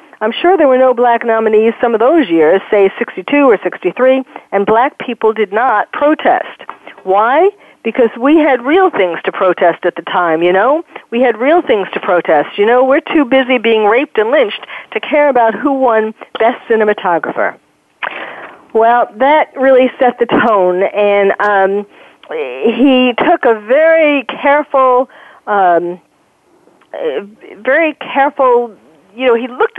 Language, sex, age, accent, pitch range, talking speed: English, female, 50-69, American, 195-275 Hz, 155 wpm